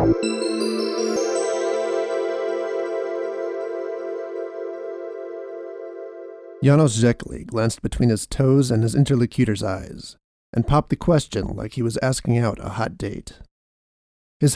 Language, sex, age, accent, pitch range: English, male, 40-59, American, 95-135 Hz